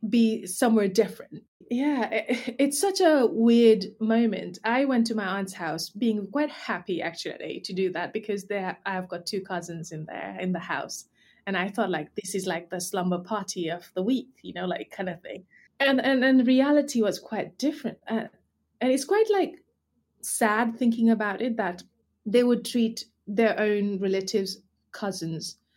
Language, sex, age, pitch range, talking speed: English, female, 20-39, 185-230 Hz, 175 wpm